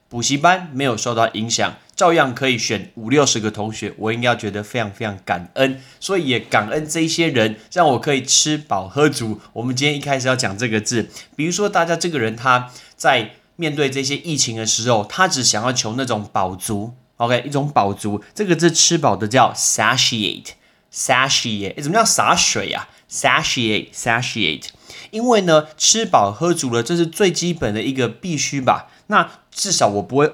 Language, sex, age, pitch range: Chinese, male, 20-39, 110-155 Hz